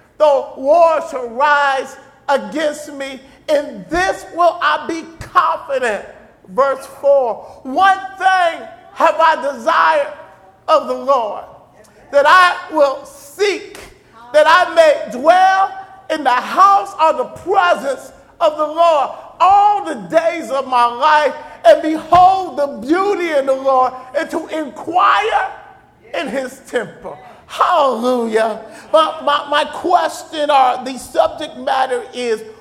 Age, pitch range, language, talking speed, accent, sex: 50-69, 255-325 Hz, English, 125 wpm, American, male